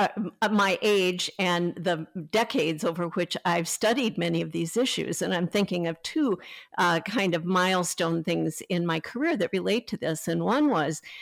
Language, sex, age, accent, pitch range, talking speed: English, female, 50-69, American, 165-200 Hz, 180 wpm